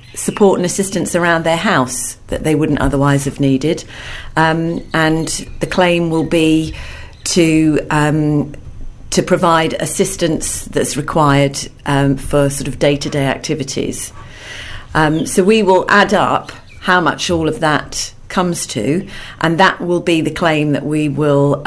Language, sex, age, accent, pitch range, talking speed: English, female, 40-59, British, 135-160 Hz, 150 wpm